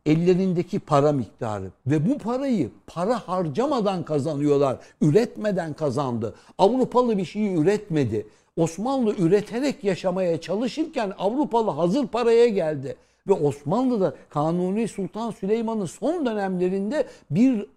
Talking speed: 105 wpm